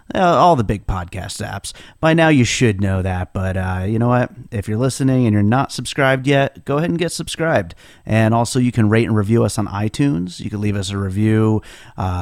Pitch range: 100-120 Hz